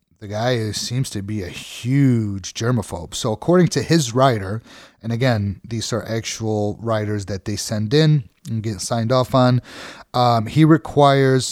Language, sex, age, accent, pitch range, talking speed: English, male, 30-49, American, 100-130 Hz, 160 wpm